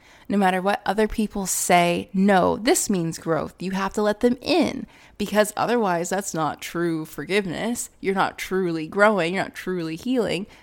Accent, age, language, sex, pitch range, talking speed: American, 20-39, English, female, 160-205 Hz, 170 wpm